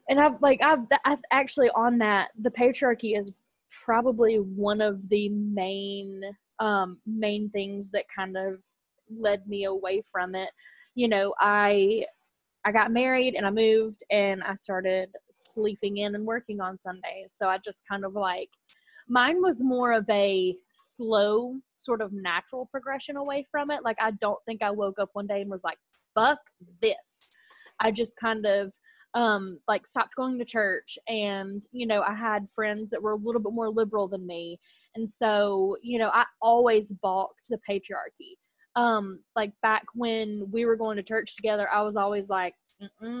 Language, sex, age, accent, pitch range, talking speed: English, female, 20-39, American, 200-240 Hz, 175 wpm